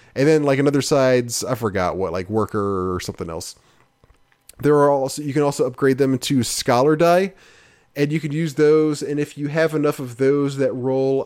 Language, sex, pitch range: English, male, 115-145 Hz